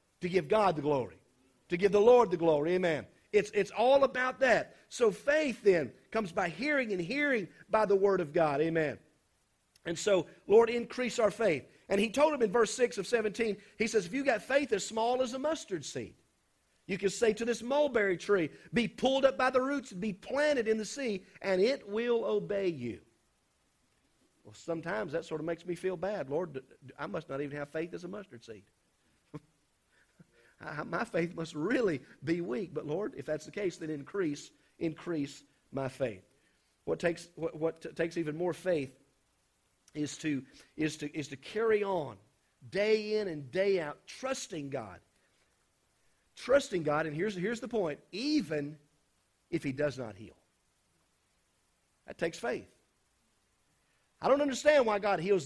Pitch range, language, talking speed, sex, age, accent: 155-220 Hz, English, 180 wpm, male, 50-69, American